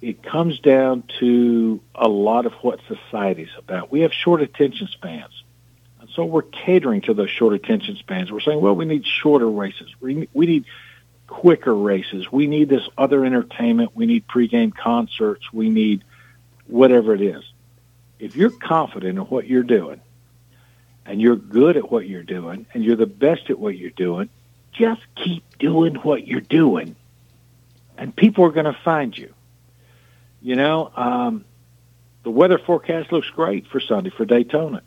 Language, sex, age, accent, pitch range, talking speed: English, male, 60-79, American, 120-150 Hz, 165 wpm